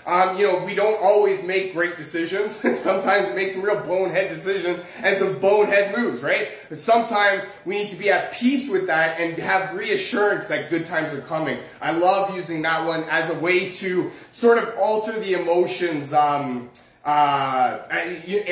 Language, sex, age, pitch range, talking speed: English, male, 20-39, 175-220 Hz, 180 wpm